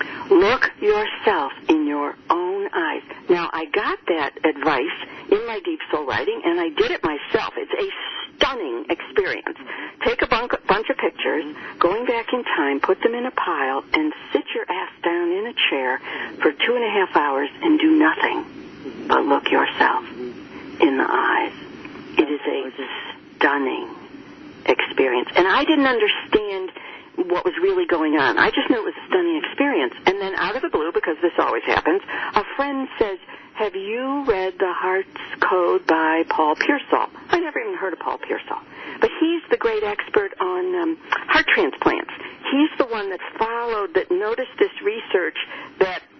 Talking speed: 170 wpm